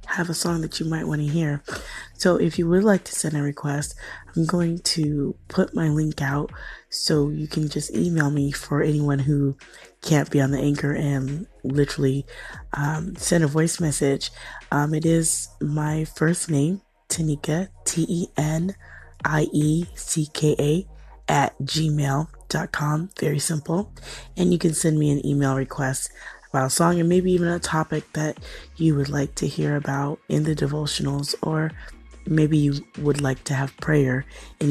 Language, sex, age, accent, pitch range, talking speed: English, female, 20-39, American, 140-160 Hz, 170 wpm